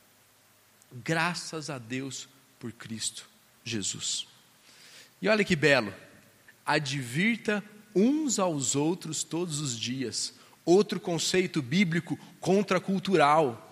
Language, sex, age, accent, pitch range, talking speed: Portuguese, male, 40-59, Brazilian, 130-185 Hz, 90 wpm